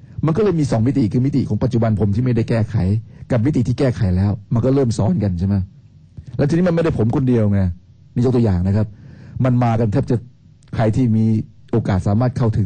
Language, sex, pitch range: Thai, male, 105-130 Hz